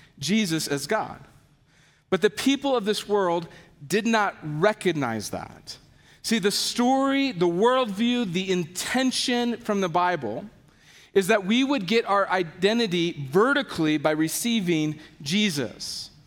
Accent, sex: American, male